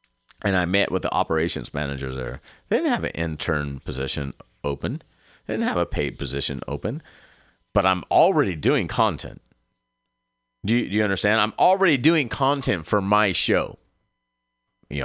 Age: 30-49